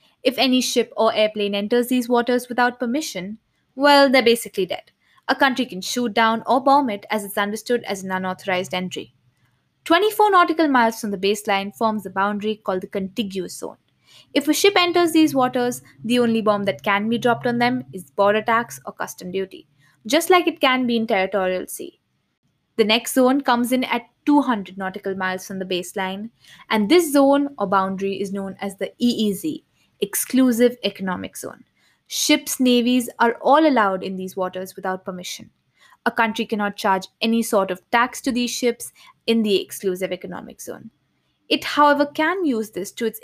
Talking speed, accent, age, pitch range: 180 wpm, Indian, 20-39, 195-255 Hz